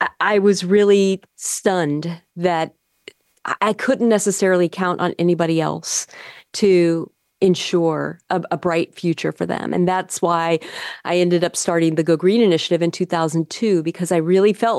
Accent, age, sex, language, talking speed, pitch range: American, 40-59, female, English, 150 wpm, 180-245 Hz